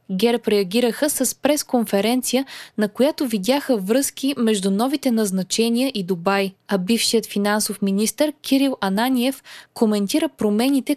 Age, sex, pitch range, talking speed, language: 20-39, female, 205-260 Hz, 115 wpm, Bulgarian